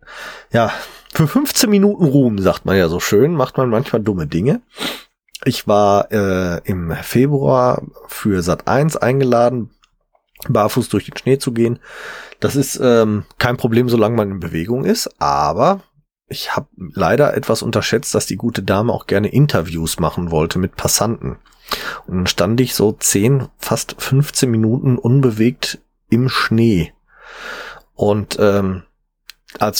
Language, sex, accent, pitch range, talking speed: German, male, German, 100-130 Hz, 145 wpm